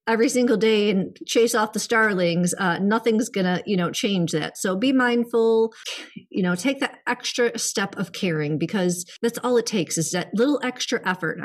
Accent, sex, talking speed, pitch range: American, female, 195 wpm, 175-220 Hz